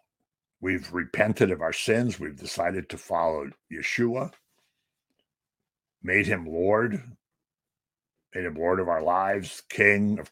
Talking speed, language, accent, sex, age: 120 wpm, English, American, male, 60-79